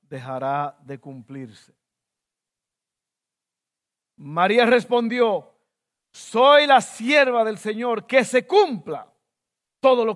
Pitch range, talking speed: 165-235 Hz, 90 wpm